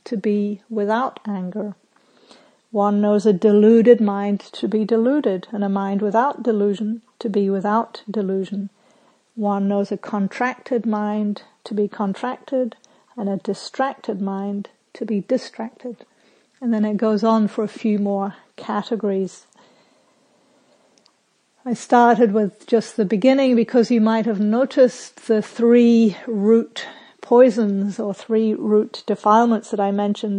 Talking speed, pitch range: 135 wpm, 205-230 Hz